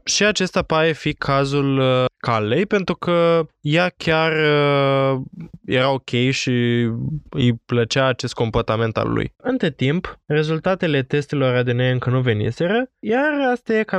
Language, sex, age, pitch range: Romanian, male, 20-39, 120-160 Hz